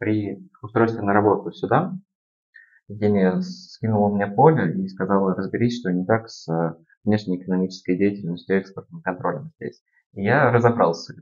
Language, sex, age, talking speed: Russian, male, 20-39, 140 wpm